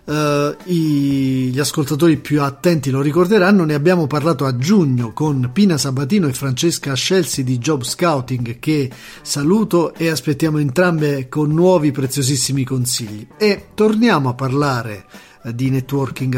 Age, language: 40-59, Italian